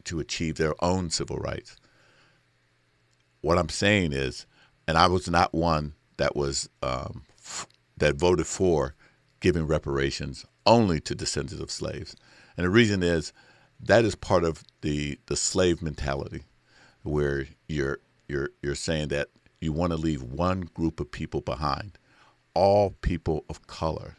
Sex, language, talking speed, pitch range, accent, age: male, English, 145 wpm, 70-85 Hz, American, 50-69